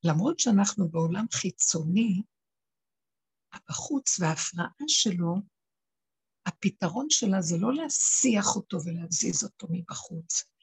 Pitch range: 180-240 Hz